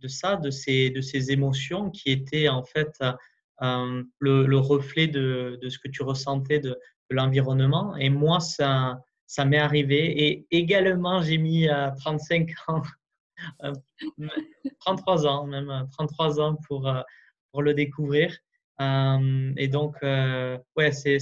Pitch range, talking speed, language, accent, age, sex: 140-165 Hz, 155 wpm, French, French, 20-39, male